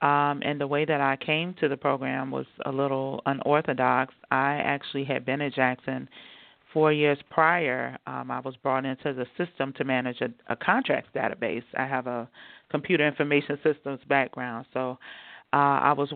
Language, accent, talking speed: English, American, 175 wpm